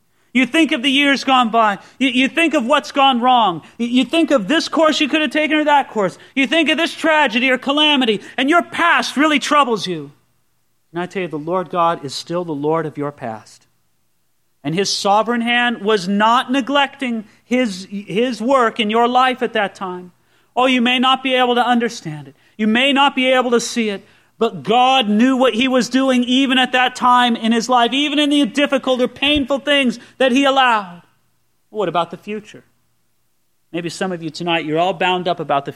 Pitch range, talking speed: 170-260 Hz, 210 wpm